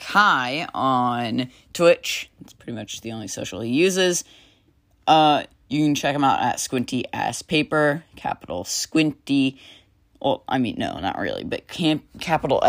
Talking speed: 150 wpm